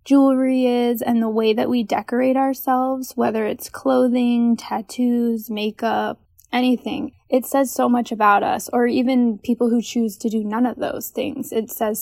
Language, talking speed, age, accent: English, 170 wpm, 10-29, American